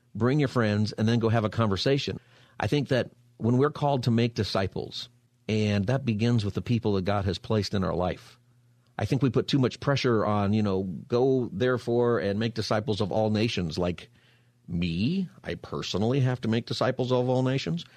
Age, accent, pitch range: 50-69, American, 105-130 Hz